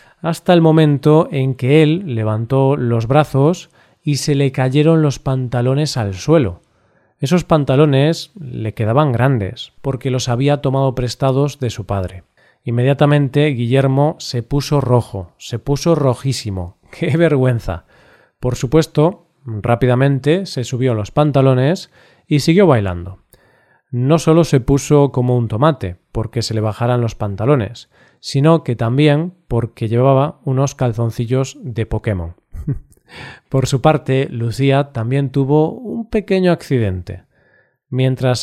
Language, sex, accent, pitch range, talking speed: Spanish, male, Spanish, 120-150 Hz, 130 wpm